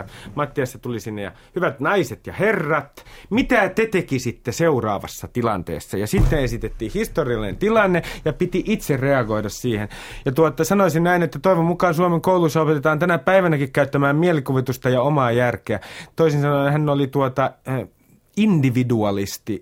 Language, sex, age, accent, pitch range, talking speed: Finnish, male, 30-49, native, 120-160 Hz, 135 wpm